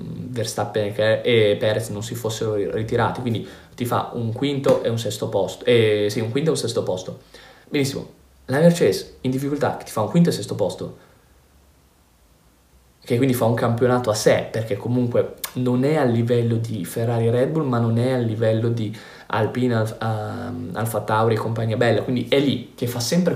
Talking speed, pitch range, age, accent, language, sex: 195 wpm, 110-130 Hz, 20-39, native, Italian, male